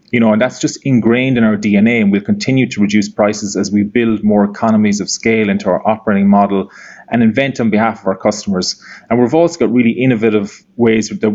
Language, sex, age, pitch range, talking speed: Vietnamese, male, 20-39, 105-125 Hz, 215 wpm